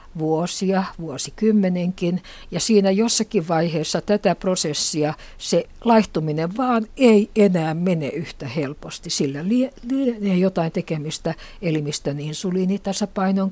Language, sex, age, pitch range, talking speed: Finnish, female, 60-79, 155-200 Hz, 100 wpm